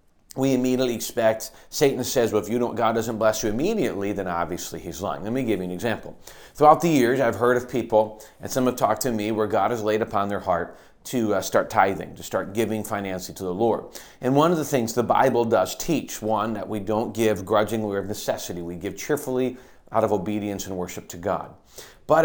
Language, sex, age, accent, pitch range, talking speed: English, male, 40-59, American, 100-125 Hz, 220 wpm